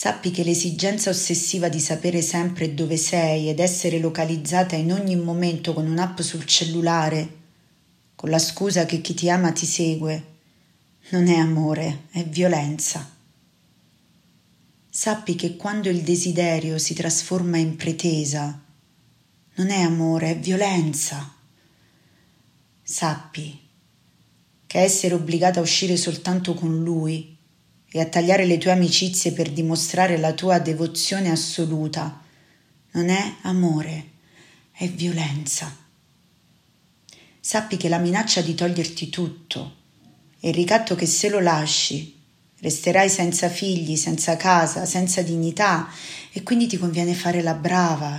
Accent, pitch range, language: native, 160-180 Hz, Italian